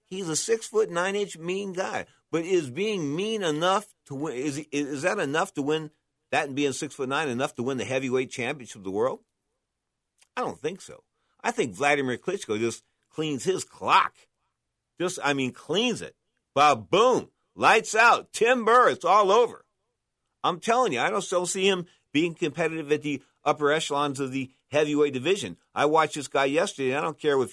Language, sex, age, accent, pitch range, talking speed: English, male, 50-69, American, 120-165 Hz, 195 wpm